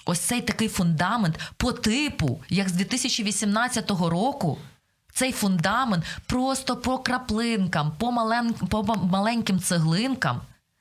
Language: Ukrainian